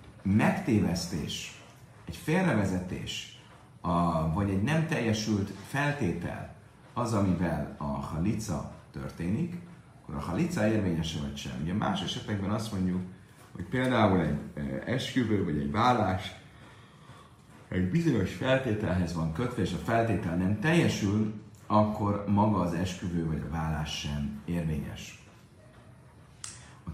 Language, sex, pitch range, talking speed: Hungarian, male, 85-115 Hz, 115 wpm